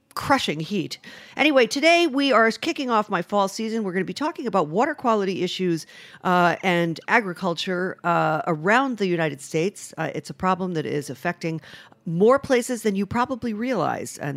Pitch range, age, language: 160-205 Hz, 50-69, English